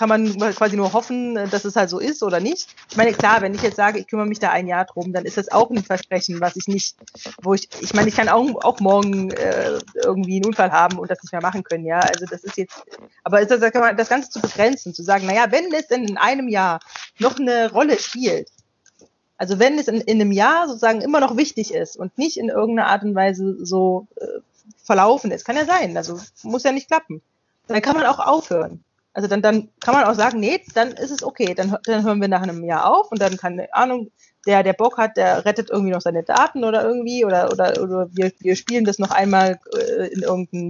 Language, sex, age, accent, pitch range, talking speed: German, female, 30-49, German, 190-245 Hz, 240 wpm